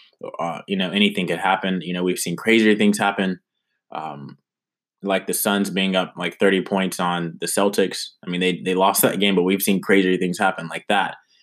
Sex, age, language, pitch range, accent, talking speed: male, 20-39, English, 90-105 Hz, American, 210 wpm